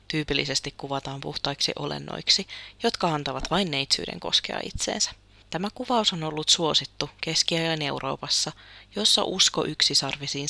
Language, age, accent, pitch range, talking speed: Finnish, 30-49, native, 145-185 Hz, 115 wpm